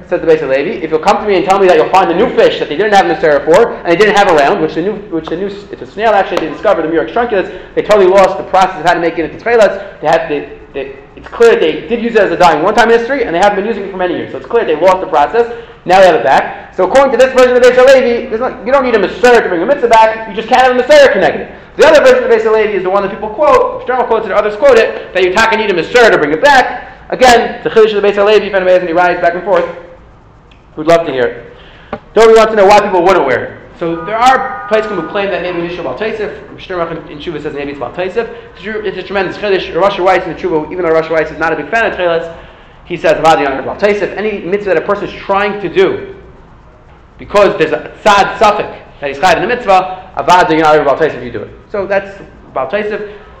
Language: English